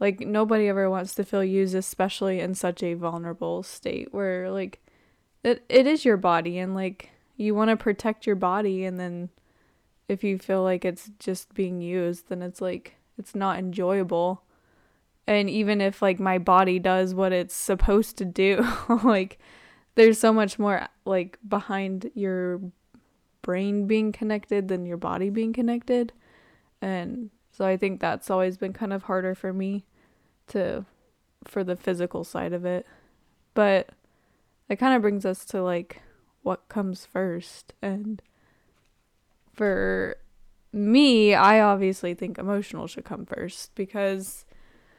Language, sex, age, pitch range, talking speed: English, female, 10-29, 185-210 Hz, 150 wpm